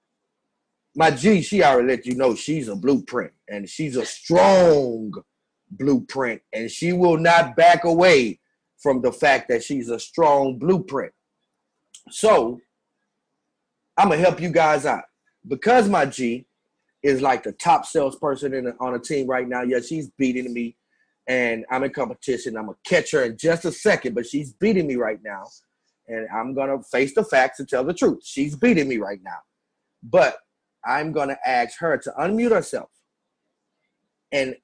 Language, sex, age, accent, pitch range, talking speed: English, male, 30-49, American, 130-185 Hz, 175 wpm